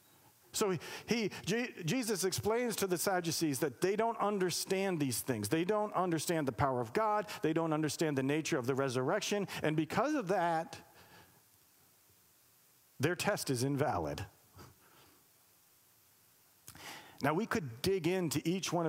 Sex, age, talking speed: male, 50-69, 145 wpm